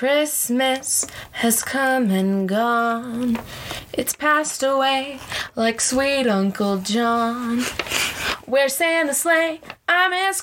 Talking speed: 100 wpm